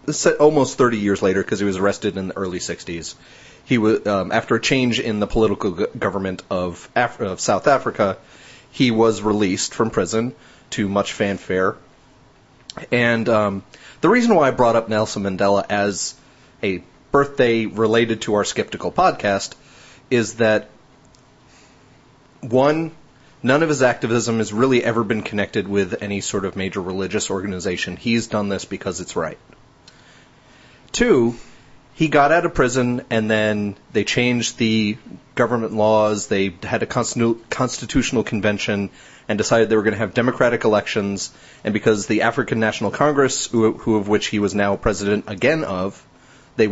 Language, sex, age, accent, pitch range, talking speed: English, male, 30-49, American, 100-125 Hz, 155 wpm